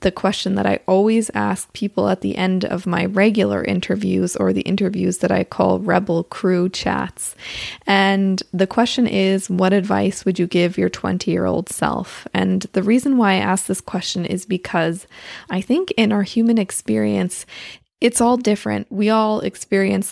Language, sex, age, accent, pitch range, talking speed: English, female, 20-39, American, 175-205 Hz, 170 wpm